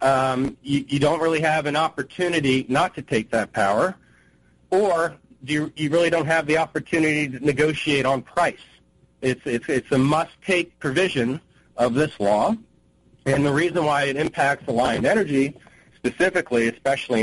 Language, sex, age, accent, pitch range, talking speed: English, male, 40-59, American, 125-150 Hz, 160 wpm